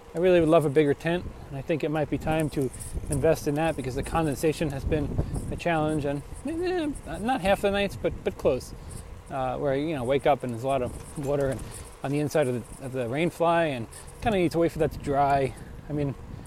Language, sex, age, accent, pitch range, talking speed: English, male, 20-39, American, 135-175 Hz, 240 wpm